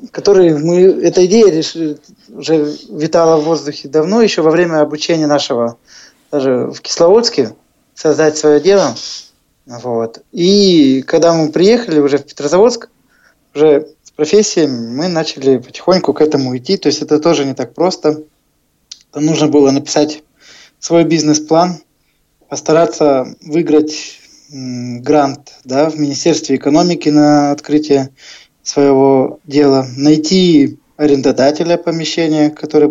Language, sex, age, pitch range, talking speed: Russian, male, 20-39, 140-165 Hz, 120 wpm